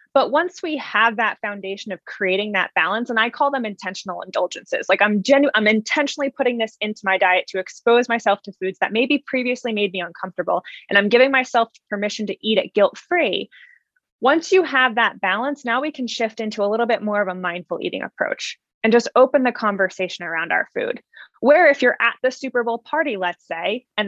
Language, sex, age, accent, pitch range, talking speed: English, female, 20-39, American, 200-270 Hz, 210 wpm